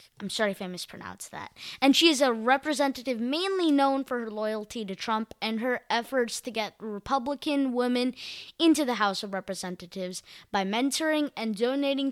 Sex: female